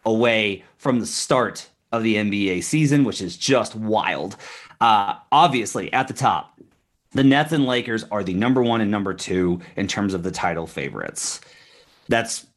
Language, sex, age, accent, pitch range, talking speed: English, male, 30-49, American, 110-140 Hz, 165 wpm